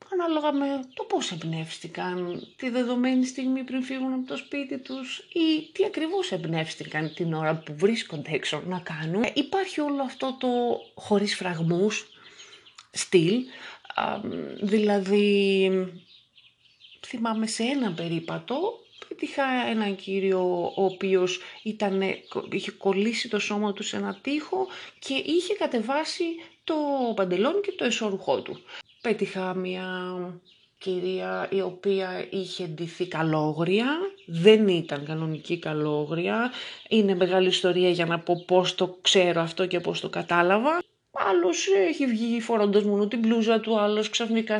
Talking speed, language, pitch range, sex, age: 130 wpm, Greek, 180-260 Hz, female, 30-49